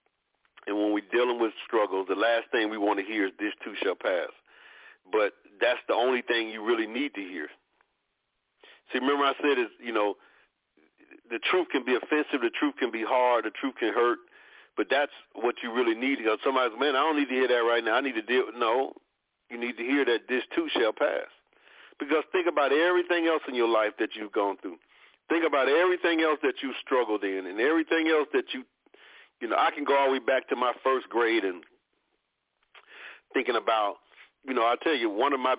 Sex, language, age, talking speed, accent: male, English, 40-59, 220 wpm, American